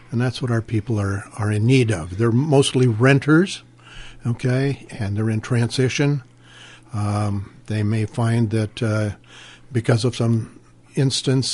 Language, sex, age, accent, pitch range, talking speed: English, male, 60-79, American, 105-130 Hz, 145 wpm